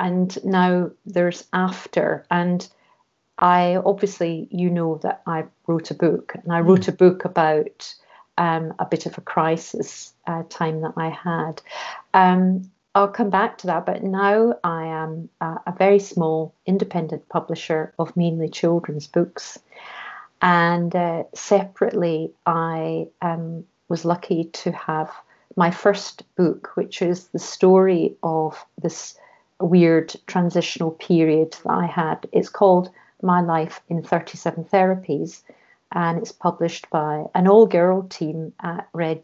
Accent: British